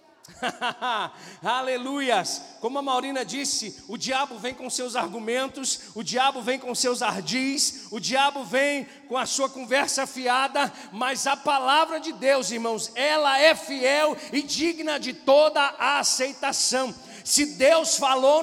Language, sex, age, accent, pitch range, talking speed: Portuguese, male, 40-59, Brazilian, 210-280 Hz, 140 wpm